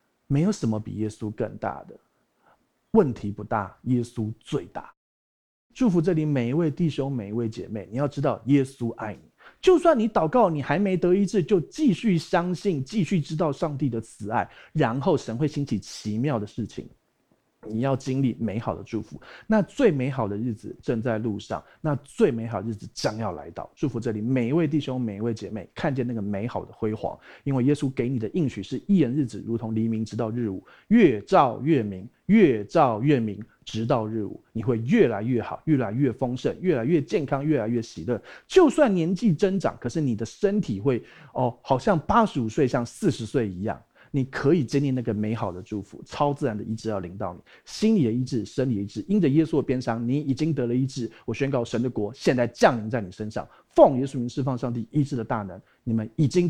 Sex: male